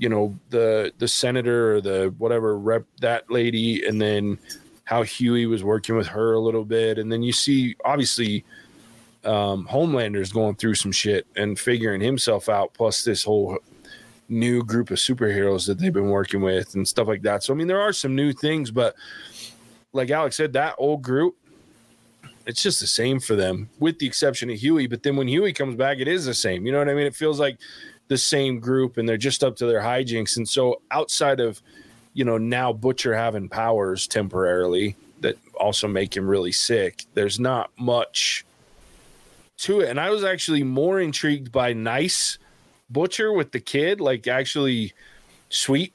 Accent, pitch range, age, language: American, 110-135 Hz, 20-39, English